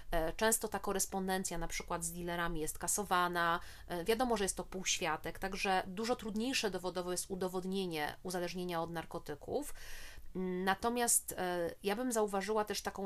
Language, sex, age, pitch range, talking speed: Polish, female, 30-49, 175-195 Hz, 140 wpm